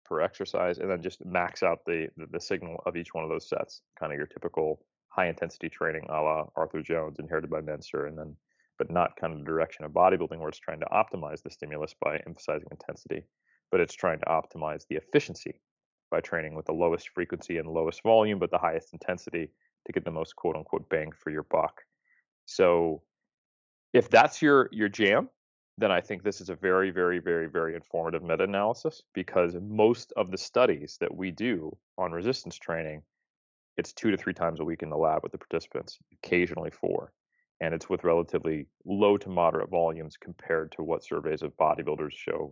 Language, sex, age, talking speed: English, male, 30-49, 195 wpm